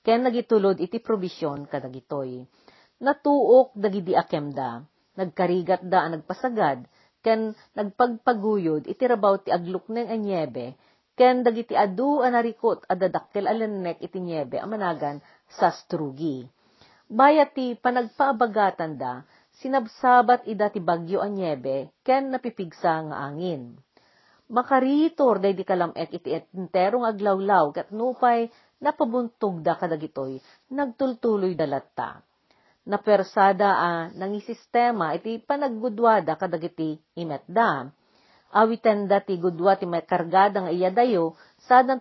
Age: 40-59